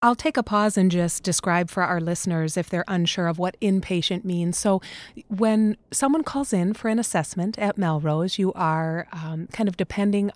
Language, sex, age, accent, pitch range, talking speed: English, female, 30-49, American, 165-195 Hz, 190 wpm